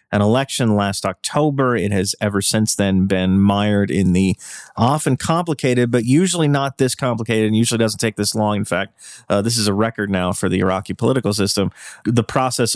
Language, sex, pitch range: English, male, 100-120 Hz